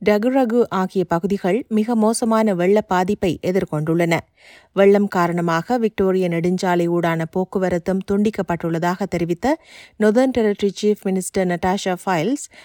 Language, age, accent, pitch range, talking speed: Tamil, 30-49, native, 185-225 Hz, 100 wpm